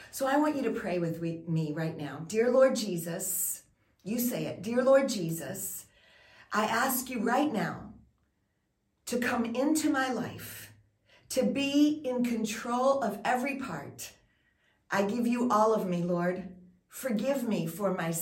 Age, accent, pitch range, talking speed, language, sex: 40-59, American, 185-250 Hz, 155 wpm, English, female